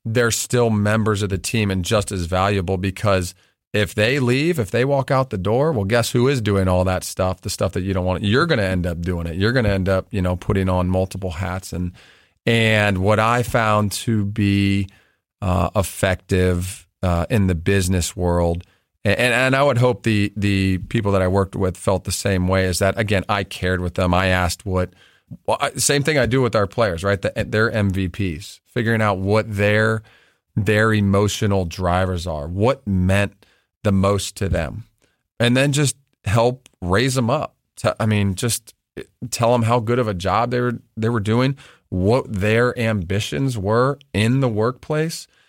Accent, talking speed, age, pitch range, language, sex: American, 195 wpm, 40-59, 95-115 Hz, English, male